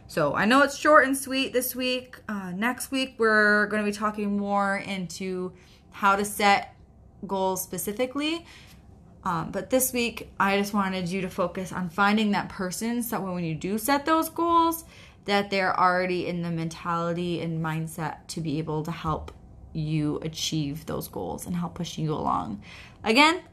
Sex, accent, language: female, American, English